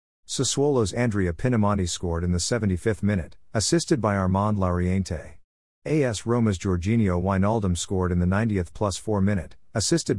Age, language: 50-69, English